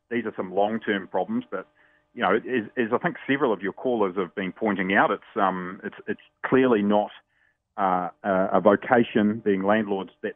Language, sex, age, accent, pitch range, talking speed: English, male, 30-49, Australian, 100-120 Hz, 180 wpm